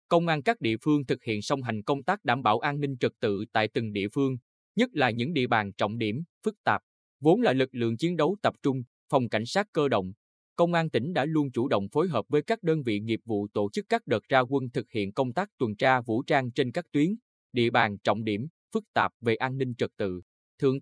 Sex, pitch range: male, 115-150 Hz